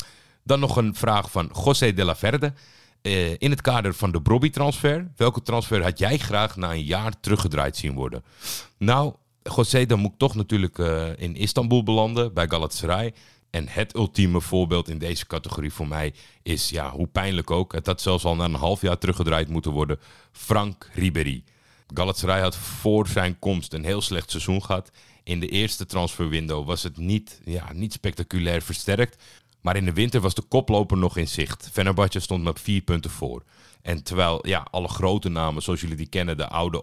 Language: Dutch